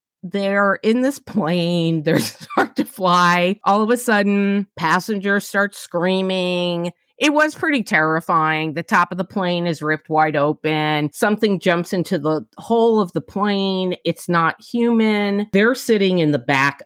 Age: 40-59